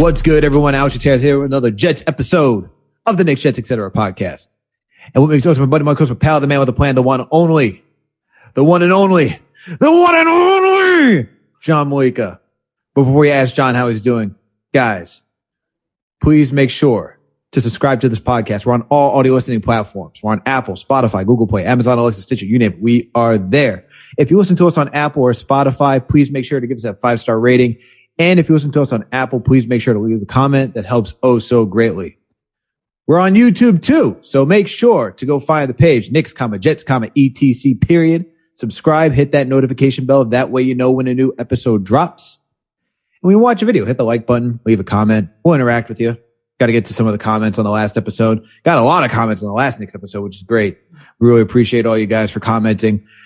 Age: 30-49